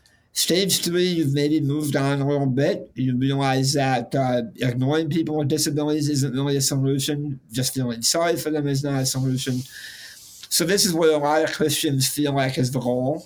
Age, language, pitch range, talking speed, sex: 50-69, English, 125-155 Hz, 195 wpm, male